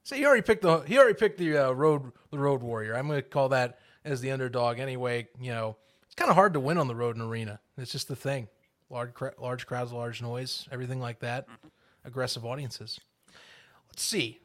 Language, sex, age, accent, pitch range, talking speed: English, male, 30-49, American, 125-170 Hz, 215 wpm